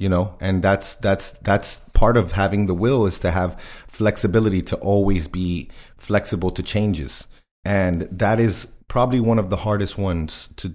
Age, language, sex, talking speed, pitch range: 30-49, English, male, 175 wpm, 90-110 Hz